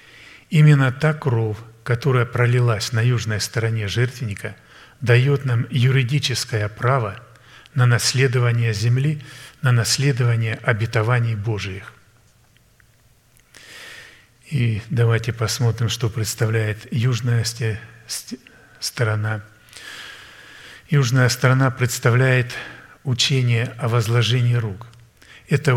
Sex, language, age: male, Russian, 40-59